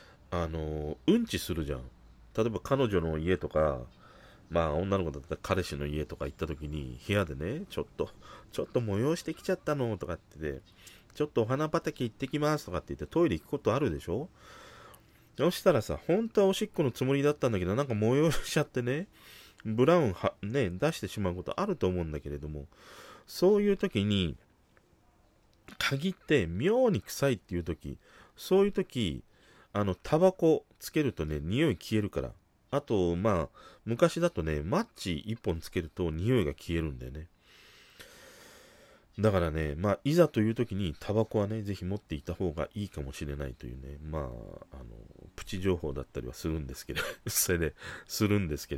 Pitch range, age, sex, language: 75-125 Hz, 40-59, male, Japanese